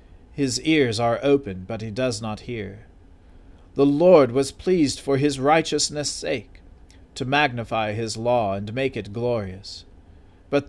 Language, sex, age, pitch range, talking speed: English, male, 40-59, 95-145 Hz, 145 wpm